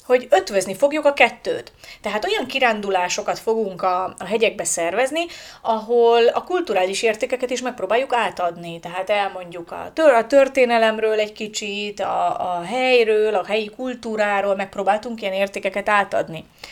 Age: 30-49